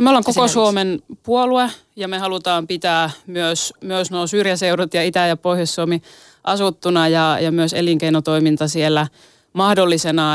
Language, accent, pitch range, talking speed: Finnish, native, 160-200 Hz, 140 wpm